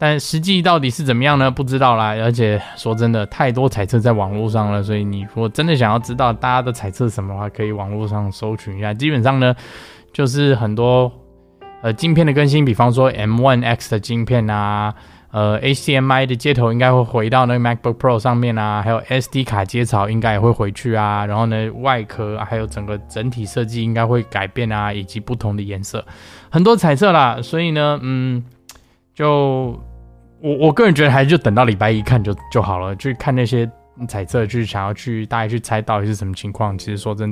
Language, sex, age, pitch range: Chinese, male, 20-39, 105-140 Hz